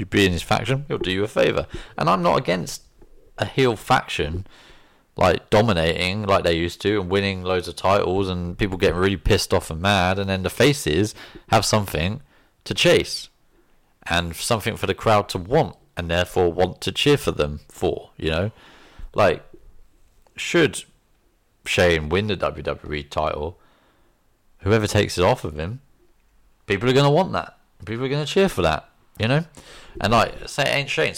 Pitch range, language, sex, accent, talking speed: 90-130 Hz, English, male, British, 185 wpm